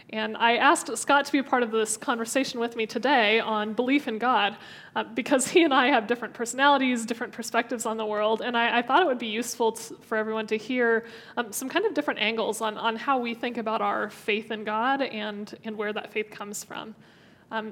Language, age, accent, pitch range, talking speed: English, 20-39, American, 220-260 Hz, 225 wpm